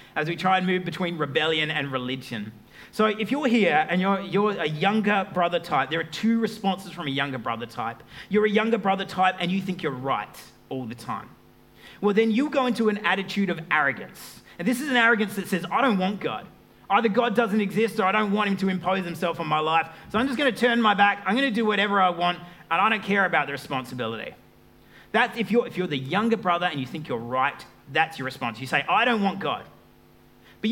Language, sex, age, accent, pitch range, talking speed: English, male, 30-49, Australian, 130-195 Hz, 235 wpm